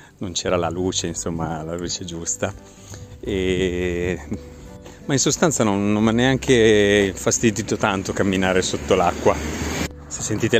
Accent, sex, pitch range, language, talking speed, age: native, male, 90-105 Hz, Italian, 130 wpm, 30-49